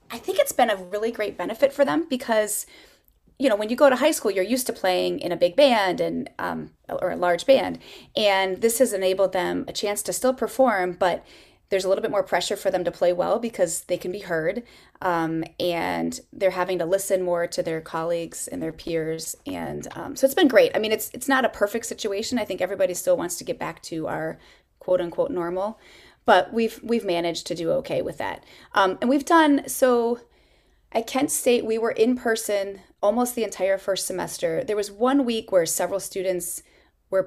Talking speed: 215 wpm